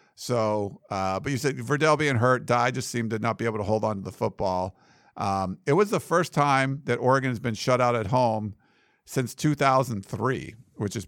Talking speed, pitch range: 210 wpm, 110-135 Hz